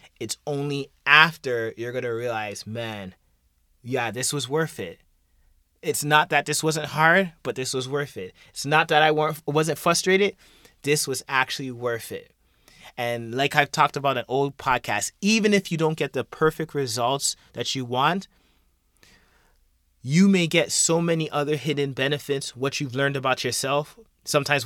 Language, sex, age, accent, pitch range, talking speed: English, male, 30-49, American, 120-155 Hz, 165 wpm